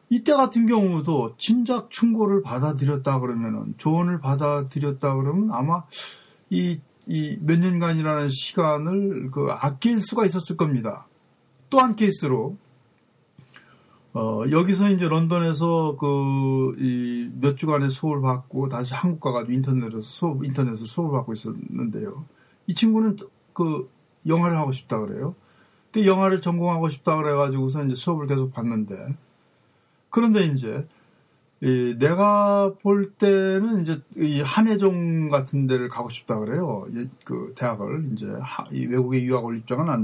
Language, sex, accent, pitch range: Korean, male, native, 130-185 Hz